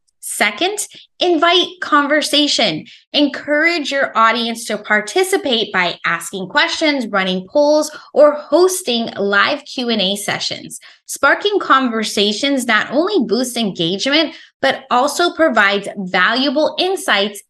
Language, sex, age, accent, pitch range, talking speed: English, female, 20-39, American, 210-295 Hz, 100 wpm